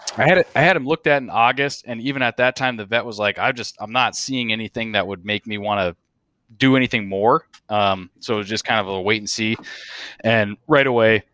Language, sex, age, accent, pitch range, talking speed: English, male, 20-39, American, 100-120 Hz, 255 wpm